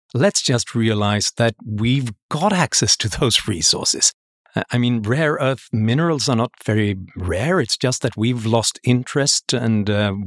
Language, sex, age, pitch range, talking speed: English, male, 50-69, 100-120 Hz, 160 wpm